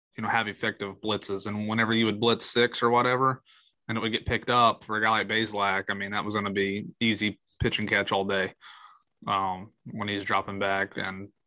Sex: male